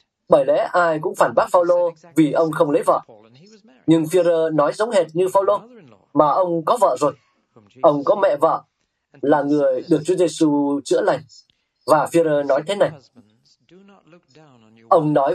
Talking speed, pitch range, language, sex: 165 wpm, 140-175 Hz, Vietnamese, male